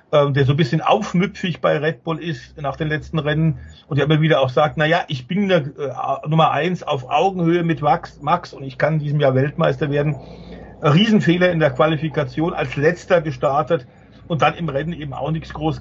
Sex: male